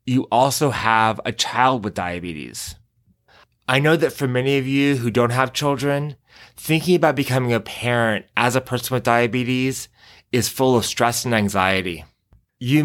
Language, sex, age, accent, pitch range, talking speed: English, male, 20-39, American, 105-125 Hz, 165 wpm